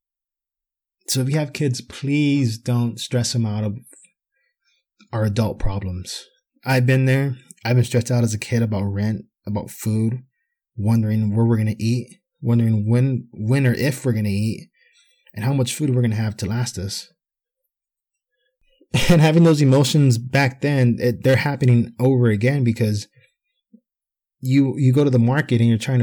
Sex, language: male, English